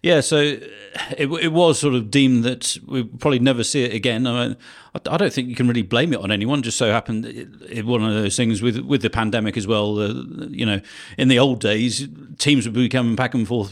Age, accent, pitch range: 40-59, British, 115-140 Hz